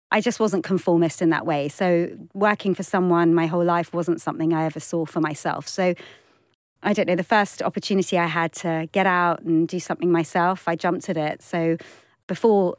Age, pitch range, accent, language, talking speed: 30-49, 165-185 Hz, British, English, 200 wpm